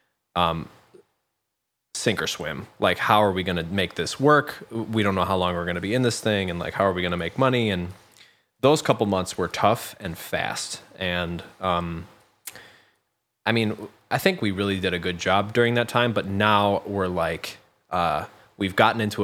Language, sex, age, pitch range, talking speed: English, male, 20-39, 90-105 Hz, 205 wpm